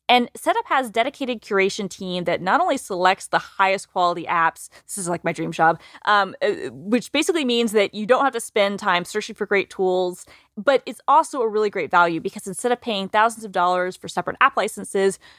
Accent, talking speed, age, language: American, 205 wpm, 20-39, English